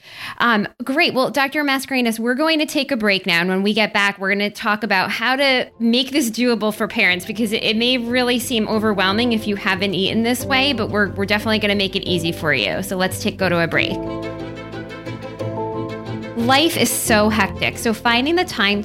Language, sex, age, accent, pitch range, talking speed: English, female, 20-39, American, 195-255 Hz, 215 wpm